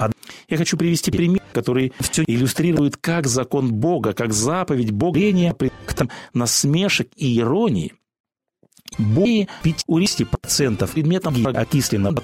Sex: male